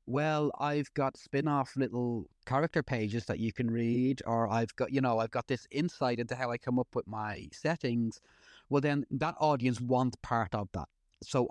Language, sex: English, male